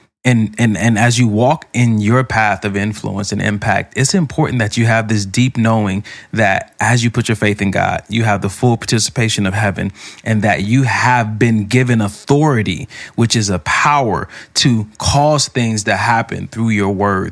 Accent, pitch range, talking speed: American, 100-115 Hz, 190 wpm